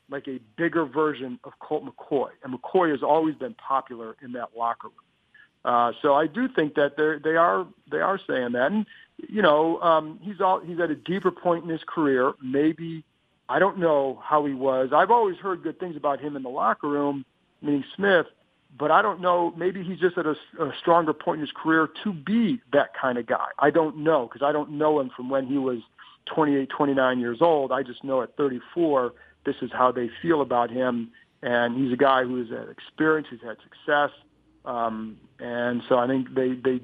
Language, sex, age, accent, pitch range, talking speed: English, male, 40-59, American, 130-165 Hz, 210 wpm